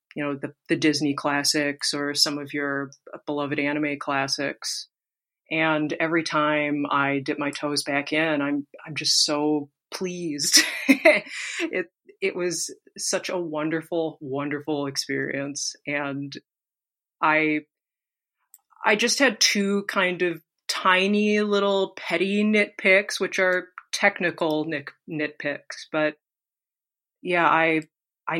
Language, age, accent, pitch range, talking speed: English, 30-49, American, 150-190 Hz, 115 wpm